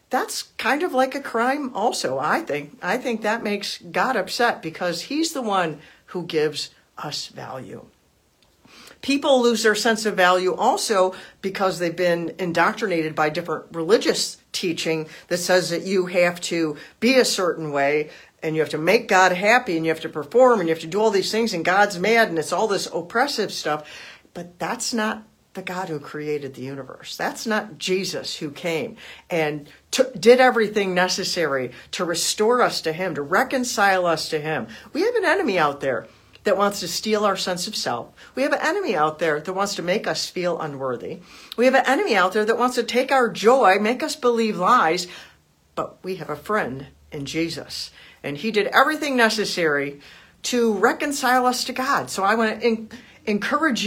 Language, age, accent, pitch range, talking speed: English, 50-69, American, 160-230 Hz, 190 wpm